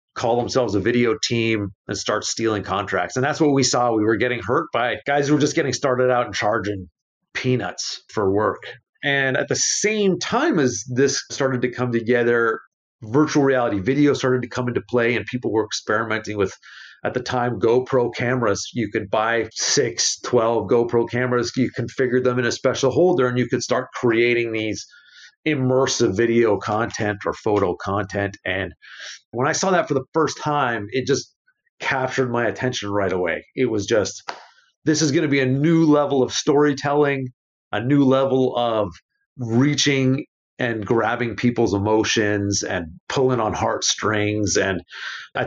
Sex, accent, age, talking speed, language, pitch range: male, American, 40-59, 170 wpm, English, 115-140 Hz